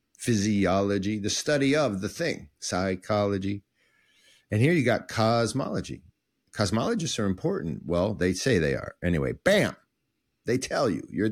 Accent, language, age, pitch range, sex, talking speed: American, English, 50-69, 100-135 Hz, male, 140 wpm